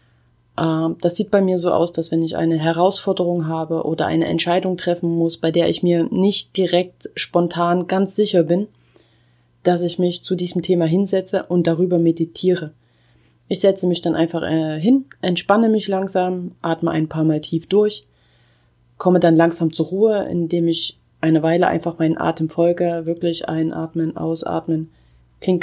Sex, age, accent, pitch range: female, 30-49, German, 160-185 Hz